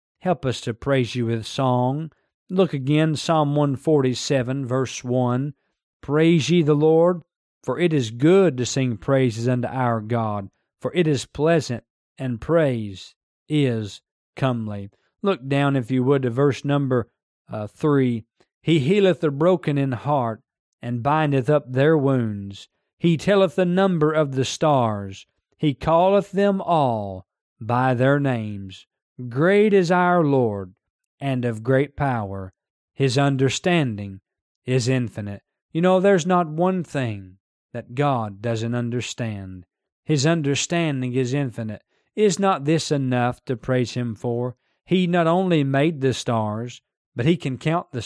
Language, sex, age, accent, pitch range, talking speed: English, male, 40-59, American, 120-160 Hz, 145 wpm